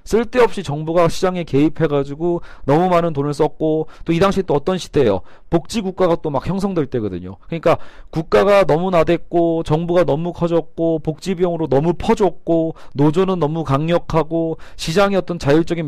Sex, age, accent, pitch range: male, 40-59, native, 145-190 Hz